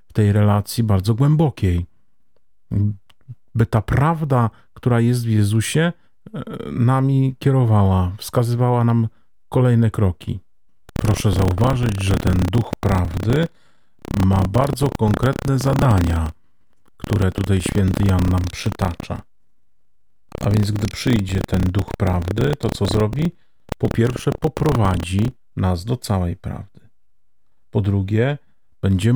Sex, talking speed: male, 110 wpm